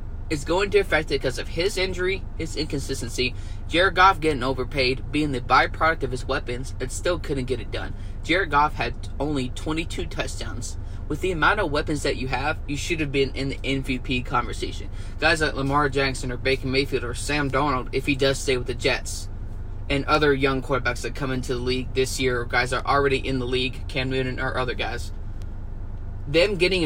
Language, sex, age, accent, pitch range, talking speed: English, male, 20-39, American, 100-140 Hz, 205 wpm